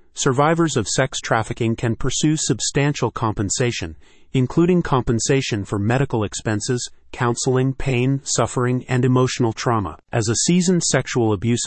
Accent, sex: American, male